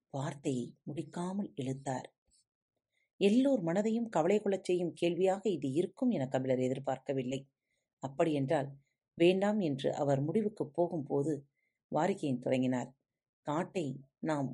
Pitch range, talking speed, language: 135-190 Hz, 95 wpm, Tamil